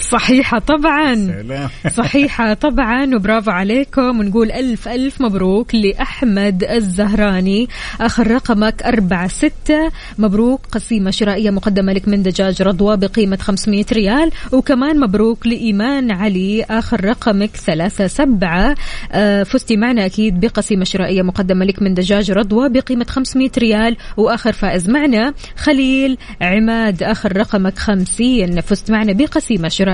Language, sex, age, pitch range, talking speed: Arabic, female, 20-39, 195-240 Hz, 120 wpm